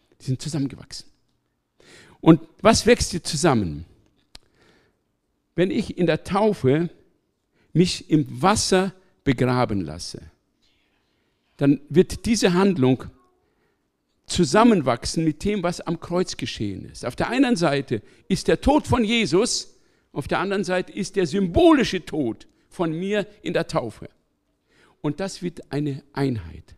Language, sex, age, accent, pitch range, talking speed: German, male, 50-69, German, 115-180 Hz, 130 wpm